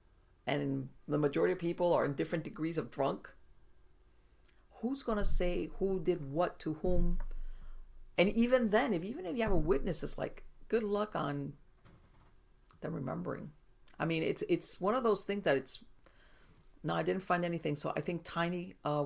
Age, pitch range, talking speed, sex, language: 50-69, 145-175 Hz, 175 wpm, female, English